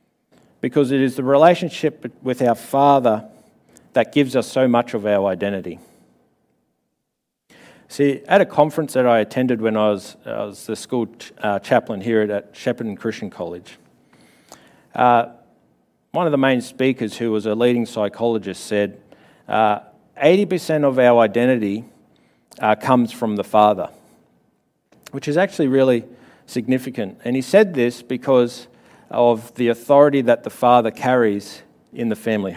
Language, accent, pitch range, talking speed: English, Australian, 115-145 Hz, 145 wpm